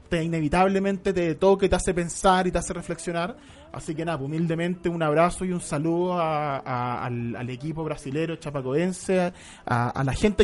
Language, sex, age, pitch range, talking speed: Spanish, male, 20-39, 150-195 Hz, 190 wpm